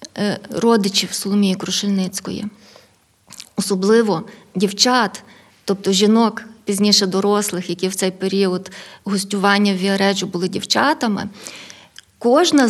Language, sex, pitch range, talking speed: Ukrainian, female, 200-250 Hz, 90 wpm